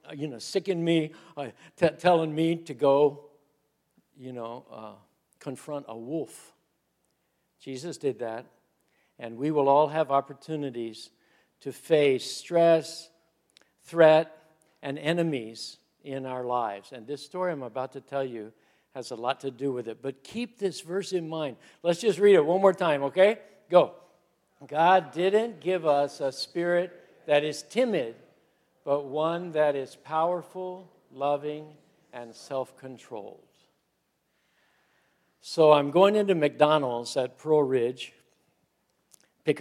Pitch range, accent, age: 135-165 Hz, American, 60-79